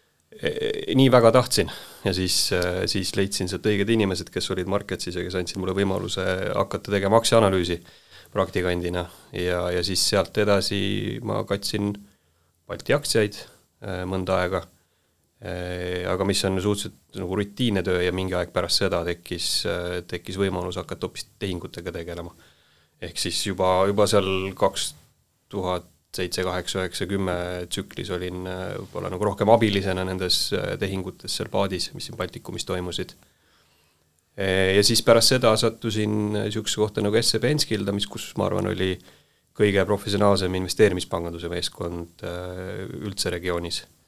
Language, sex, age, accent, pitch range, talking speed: English, male, 30-49, Finnish, 90-100 Hz, 125 wpm